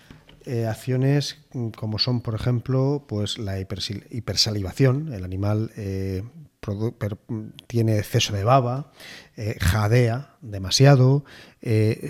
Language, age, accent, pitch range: Spanish, 30-49, Spanish, 105-130 Hz